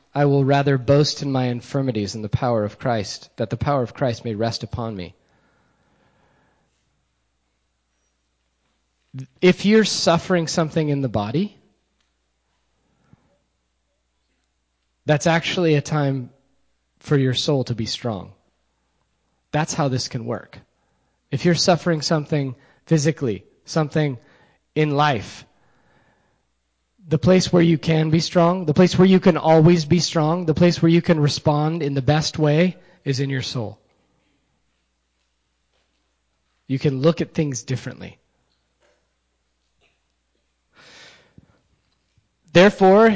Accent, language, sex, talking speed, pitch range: American, English, male, 120 wpm, 95-155 Hz